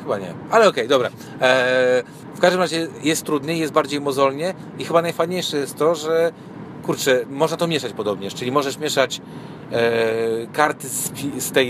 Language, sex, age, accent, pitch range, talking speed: Polish, male, 40-59, native, 125-155 Hz, 175 wpm